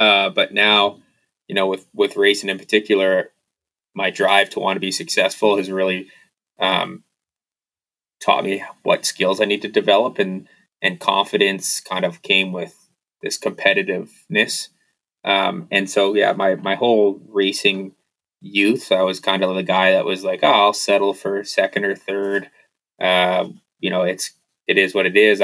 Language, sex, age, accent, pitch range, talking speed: English, male, 20-39, American, 95-105 Hz, 165 wpm